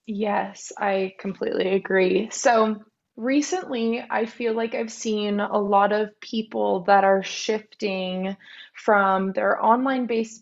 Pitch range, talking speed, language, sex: 190-220 Hz, 125 wpm, English, female